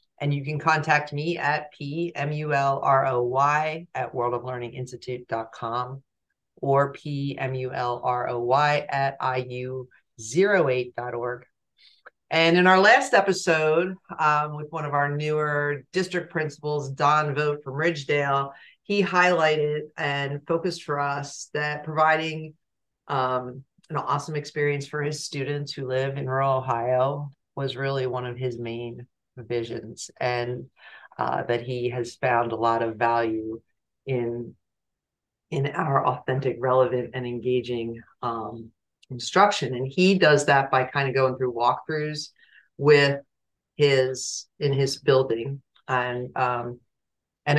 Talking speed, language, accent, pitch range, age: 120 wpm, English, American, 125-155 Hz, 40-59